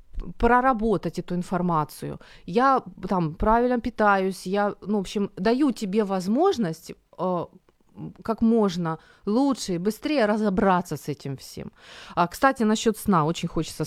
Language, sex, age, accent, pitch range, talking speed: Ukrainian, female, 30-49, native, 165-215 Hz, 125 wpm